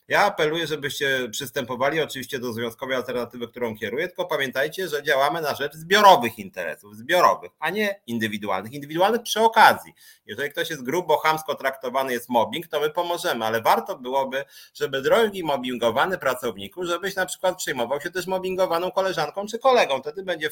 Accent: native